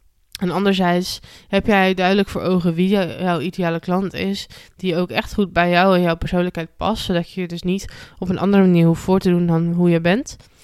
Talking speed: 220 wpm